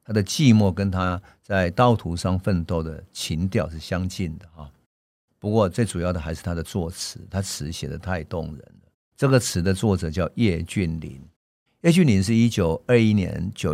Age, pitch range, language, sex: 50-69, 85-100 Hz, Chinese, male